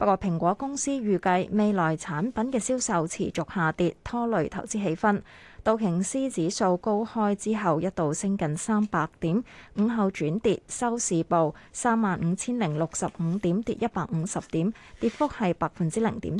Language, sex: Chinese, female